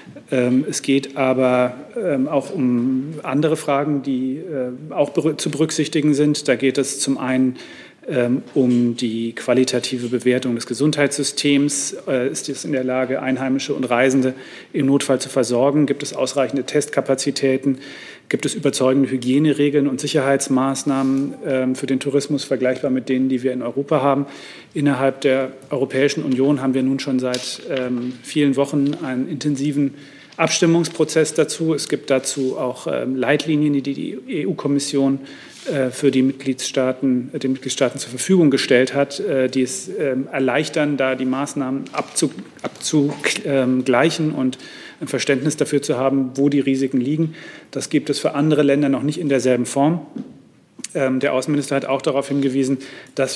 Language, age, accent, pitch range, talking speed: German, 40-59, German, 130-145 Hz, 140 wpm